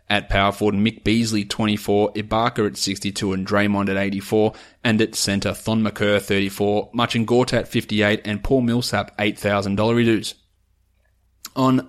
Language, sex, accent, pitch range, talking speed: English, male, Australian, 100-115 Hz, 125 wpm